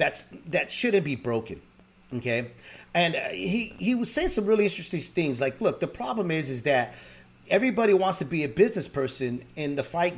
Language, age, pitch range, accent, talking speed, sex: English, 40-59, 160-220 Hz, American, 190 wpm, male